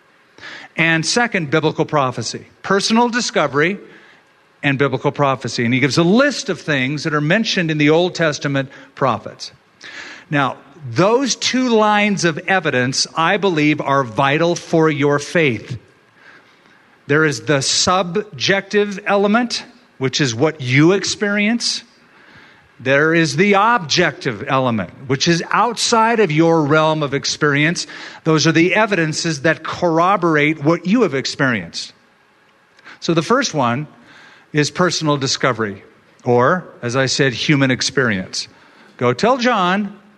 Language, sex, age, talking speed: English, male, 50-69, 130 wpm